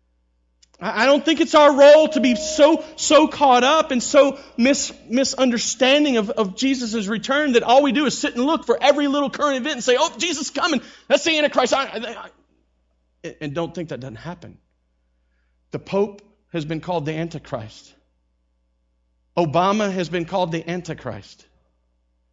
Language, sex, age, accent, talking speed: English, male, 40-59, American, 170 wpm